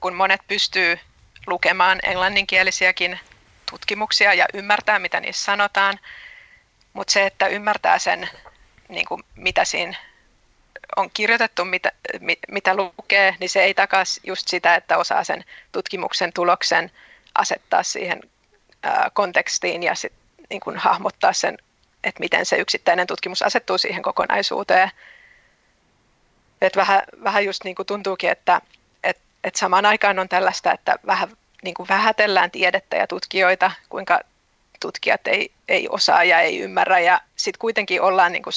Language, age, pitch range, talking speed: Finnish, 30-49, 185-210 Hz, 130 wpm